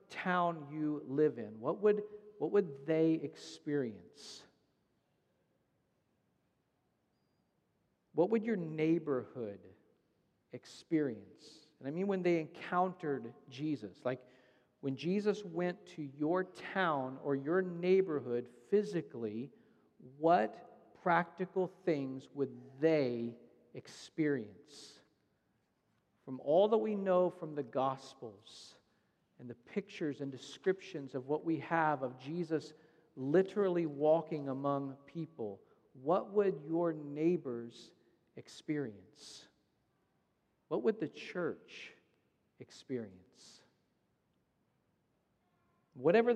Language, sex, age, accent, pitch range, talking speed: English, male, 50-69, American, 135-180 Hz, 95 wpm